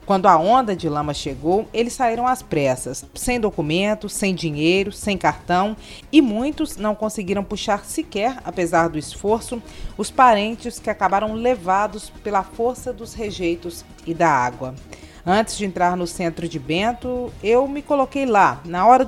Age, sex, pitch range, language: 40-59, female, 170-225 Hz, Portuguese